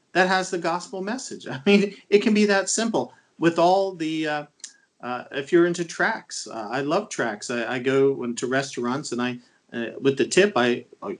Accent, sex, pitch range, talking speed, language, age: American, male, 135-195 Hz, 205 wpm, English, 40-59